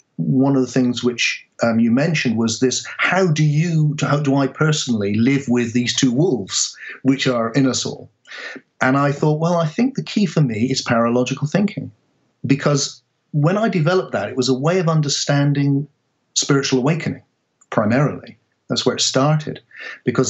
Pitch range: 120-140 Hz